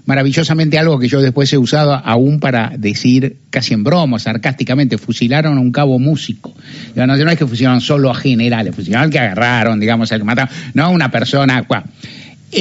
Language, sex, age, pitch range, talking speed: Spanish, male, 60-79, 120-160 Hz, 180 wpm